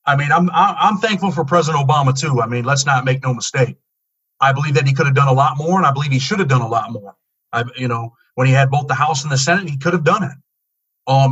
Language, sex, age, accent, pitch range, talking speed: English, male, 40-59, American, 140-195 Hz, 285 wpm